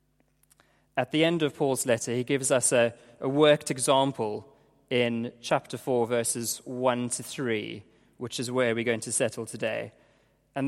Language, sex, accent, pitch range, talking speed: English, male, British, 120-155 Hz, 165 wpm